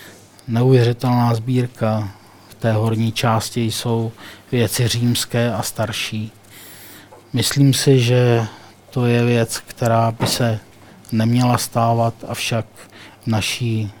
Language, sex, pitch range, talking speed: Czech, male, 110-140 Hz, 105 wpm